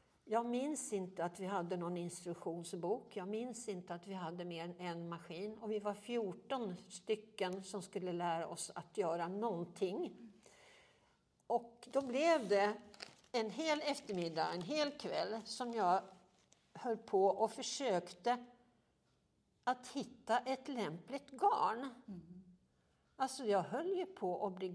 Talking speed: 140 wpm